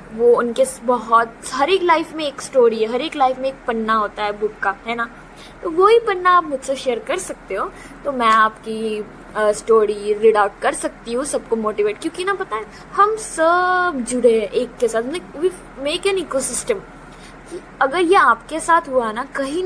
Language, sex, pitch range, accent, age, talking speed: English, female, 240-375 Hz, Indian, 20-39, 180 wpm